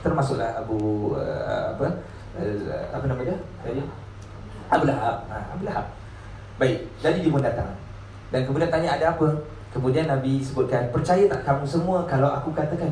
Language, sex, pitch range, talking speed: Malay, male, 120-160 Hz, 155 wpm